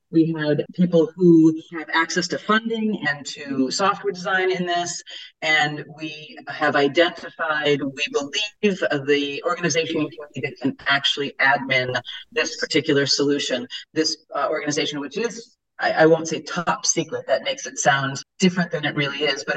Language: English